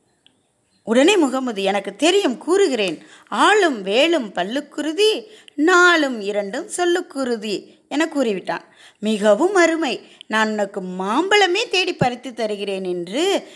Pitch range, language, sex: 210-335 Hz, Tamil, female